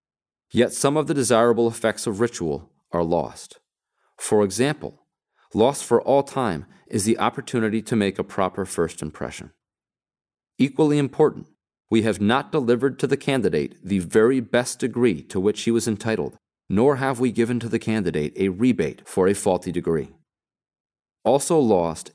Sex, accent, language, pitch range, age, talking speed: male, American, English, 95-125 Hz, 40-59, 155 wpm